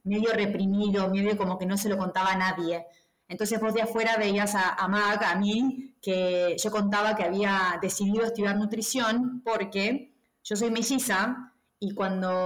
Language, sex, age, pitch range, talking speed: Spanish, female, 20-39, 195-240 Hz, 170 wpm